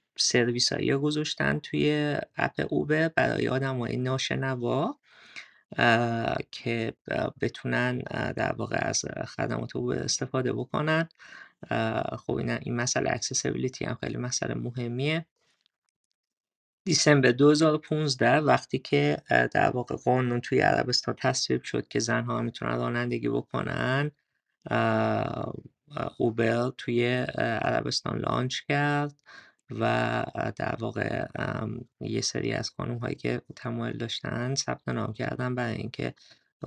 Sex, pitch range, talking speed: male, 115-140 Hz, 100 wpm